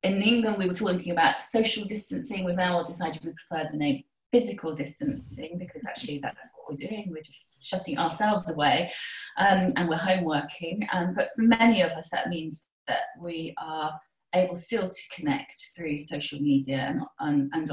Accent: British